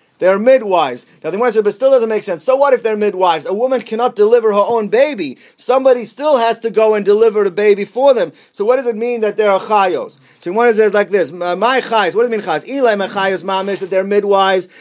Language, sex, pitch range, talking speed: English, male, 190-235 Hz, 245 wpm